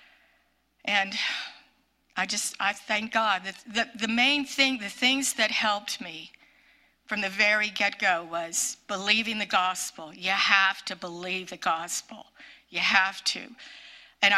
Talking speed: 140 wpm